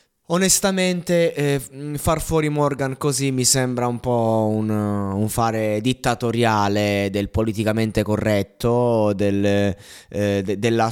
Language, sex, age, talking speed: Italian, male, 20-39, 105 wpm